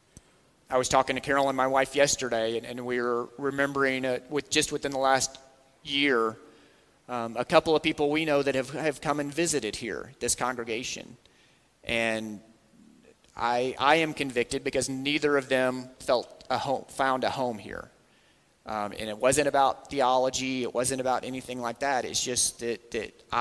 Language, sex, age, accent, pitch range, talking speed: English, male, 30-49, American, 115-135 Hz, 175 wpm